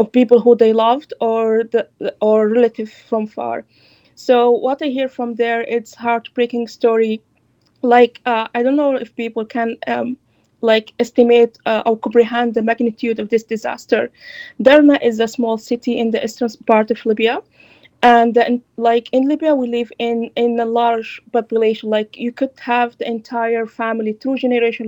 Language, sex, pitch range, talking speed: English, female, 225-245 Hz, 170 wpm